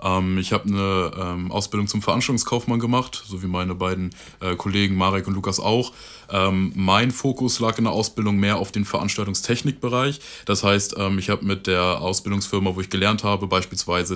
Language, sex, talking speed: German, male, 160 wpm